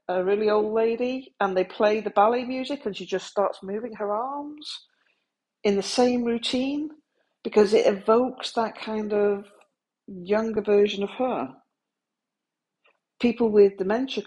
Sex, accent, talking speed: female, British, 145 wpm